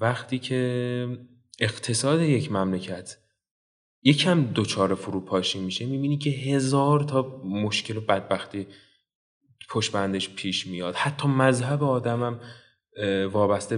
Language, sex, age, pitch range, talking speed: Persian, male, 20-39, 95-125 Hz, 105 wpm